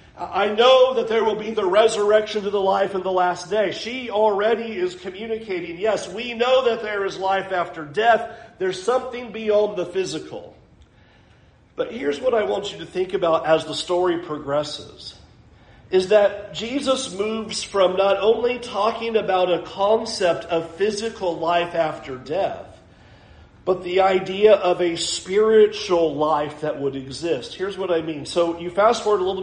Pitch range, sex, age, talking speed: 150-210 Hz, male, 40-59, 165 wpm